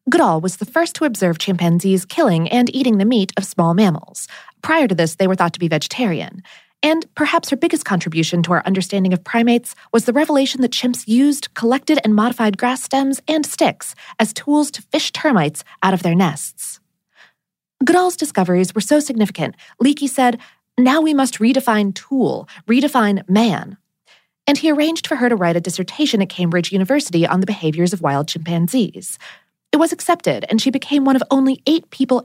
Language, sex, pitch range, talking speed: English, female, 180-270 Hz, 185 wpm